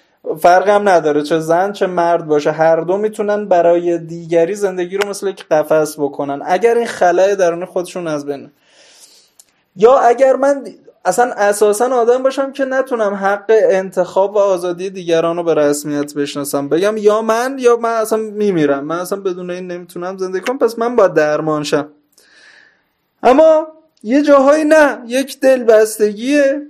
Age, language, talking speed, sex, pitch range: 20-39, Persian, 155 wpm, male, 170-225 Hz